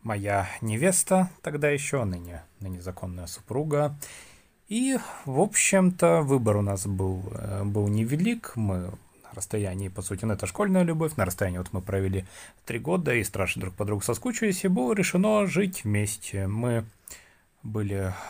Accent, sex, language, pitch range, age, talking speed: native, male, Russian, 100-170 Hz, 30-49, 150 wpm